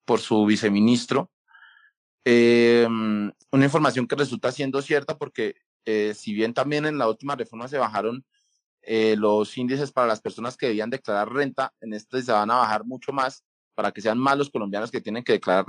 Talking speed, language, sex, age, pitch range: 185 wpm, Spanish, male, 20-39, 110-135 Hz